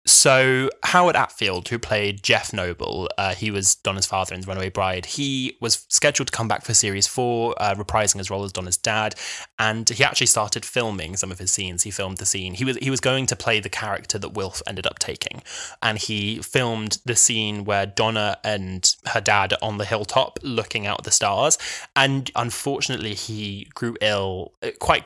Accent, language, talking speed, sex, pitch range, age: British, English, 195 wpm, male, 100-125 Hz, 10-29